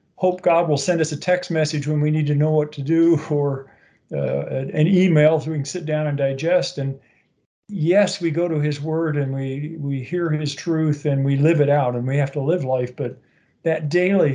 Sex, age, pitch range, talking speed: male, 50-69, 140-165 Hz, 225 wpm